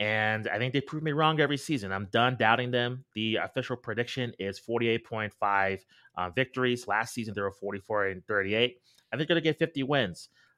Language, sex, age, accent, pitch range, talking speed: English, male, 30-49, American, 100-125 Hz, 195 wpm